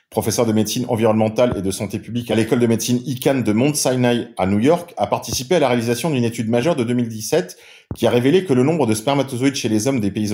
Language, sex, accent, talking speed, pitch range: French, male, French, 245 wpm, 105-130 Hz